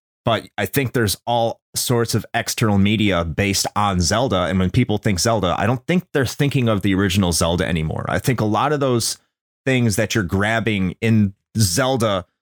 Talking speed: 190 wpm